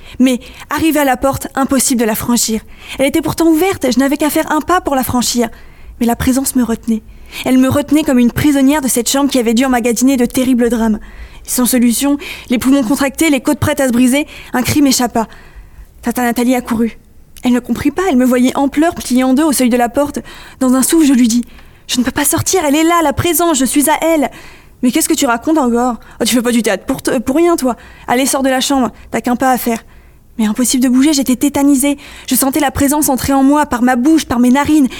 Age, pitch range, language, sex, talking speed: 20-39, 235-275 Hz, French, female, 255 wpm